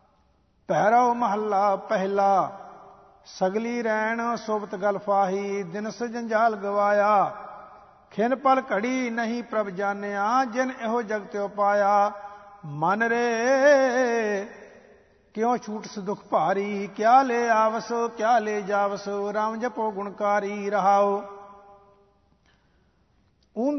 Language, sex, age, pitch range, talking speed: English, male, 50-69, 200-235 Hz, 95 wpm